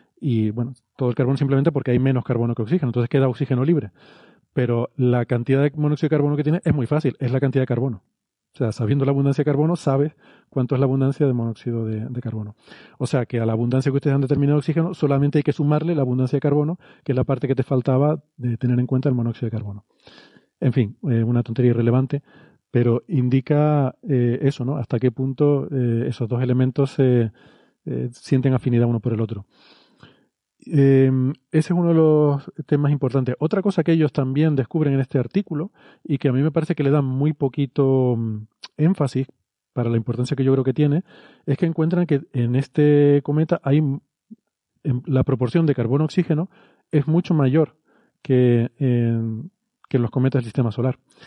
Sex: male